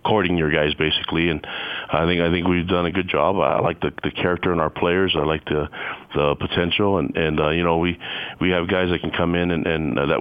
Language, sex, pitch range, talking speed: English, male, 80-90 Hz, 260 wpm